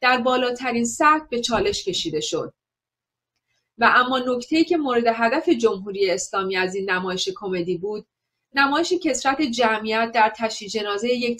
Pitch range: 205-275 Hz